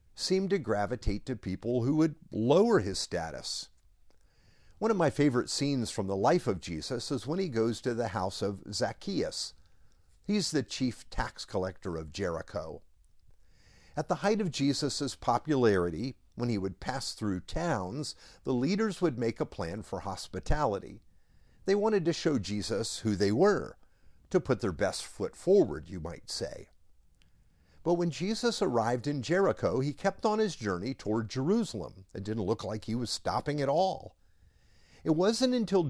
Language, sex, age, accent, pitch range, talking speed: English, male, 50-69, American, 105-165 Hz, 165 wpm